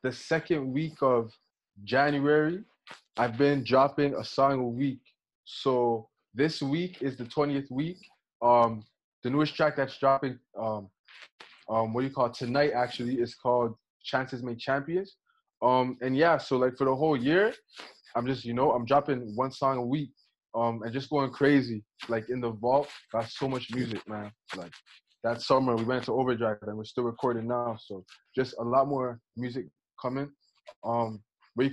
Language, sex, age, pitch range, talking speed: English, male, 20-39, 115-140 Hz, 175 wpm